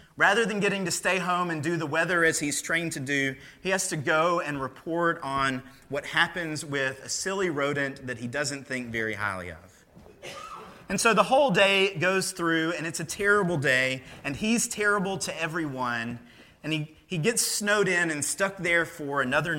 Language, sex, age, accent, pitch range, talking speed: English, male, 30-49, American, 135-180 Hz, 195 wpm